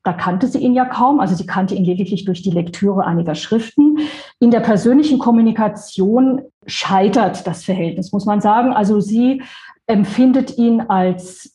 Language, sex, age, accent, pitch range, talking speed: German, female, 40-59, German, 195-260 Hz, 160 wpm